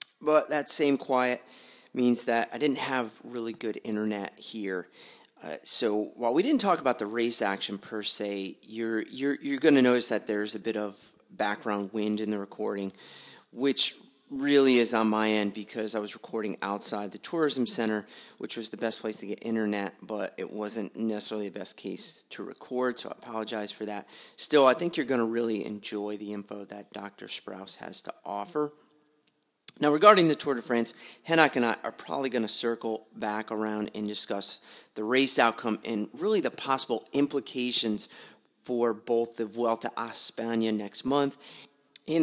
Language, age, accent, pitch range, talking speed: English, 40-59, American, 105-125 Hz, 180 wpm